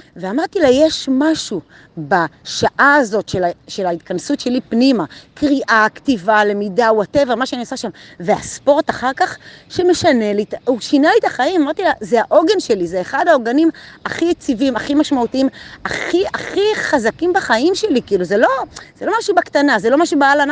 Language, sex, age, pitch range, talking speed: Hebrew, female, 30-49, 210-315 Hz, 165 wpm